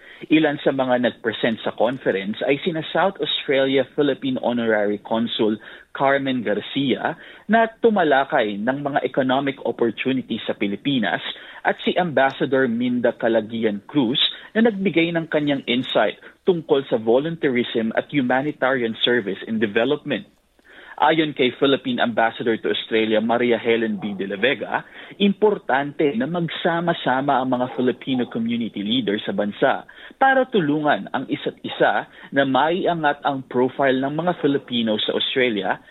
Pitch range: 120-160 Hz